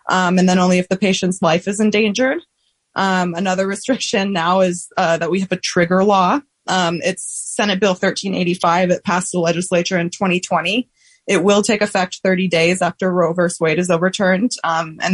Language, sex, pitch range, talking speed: English, female, 175-200 Hz, 185 wpm